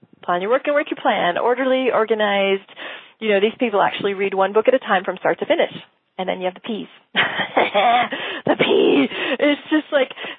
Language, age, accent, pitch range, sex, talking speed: English, 30-49, American, 210-280 Hz, female, 200 wpm